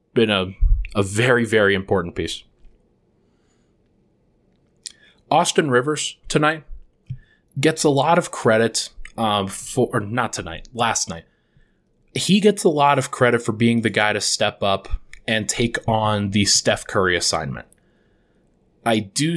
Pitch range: 100-125 Hz